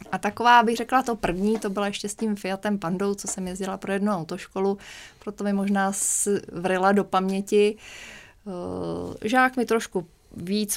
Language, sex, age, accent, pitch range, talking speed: Czech, female, 20-39, native, 190-220 Hz, 160 wpm